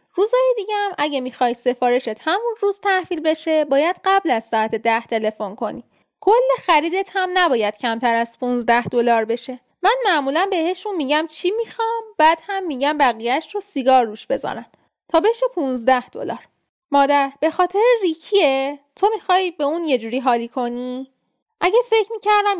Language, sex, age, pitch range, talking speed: Persian, female, 10-29, 260-355 Hz, 155 wpm